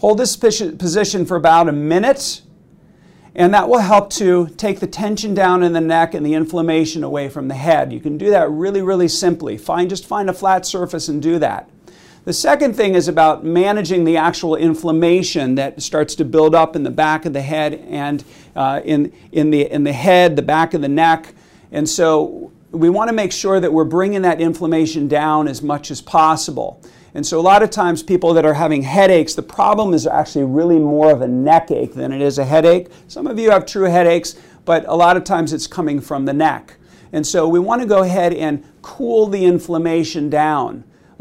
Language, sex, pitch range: English, male, 155-185 Hz